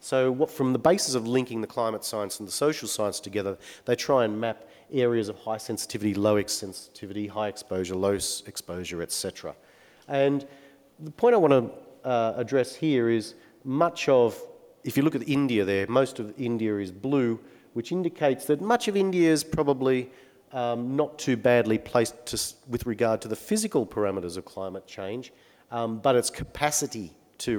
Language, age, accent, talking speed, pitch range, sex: English, 40-59, Australian, 175 wpm, 100-130 Hz, male